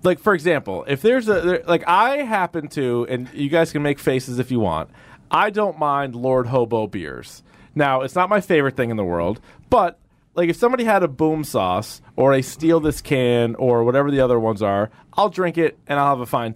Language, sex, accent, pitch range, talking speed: English, male, American, 125-175 Hz, 220 wpm